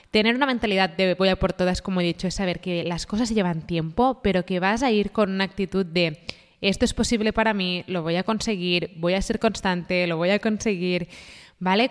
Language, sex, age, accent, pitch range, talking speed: Spanish, female, 20-39, Spanish, 180-210 Hz, 225 wpm